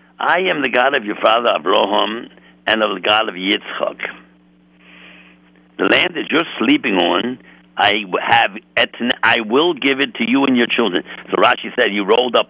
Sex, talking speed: male, 180 wpm